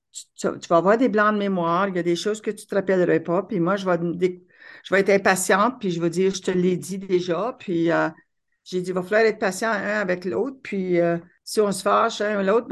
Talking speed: 270 wpm